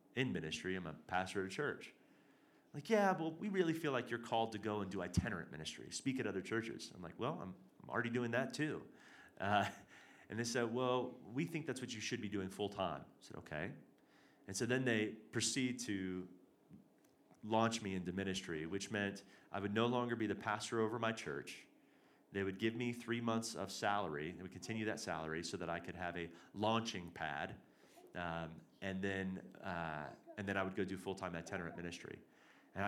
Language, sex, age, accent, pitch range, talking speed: English, male, 30-49, American, 95-120 Hz, 205 wpm